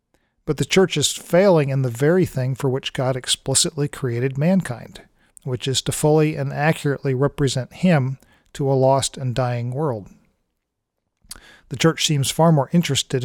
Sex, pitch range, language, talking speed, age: male, 130-160 Hz, English, 160 wpm, 40-59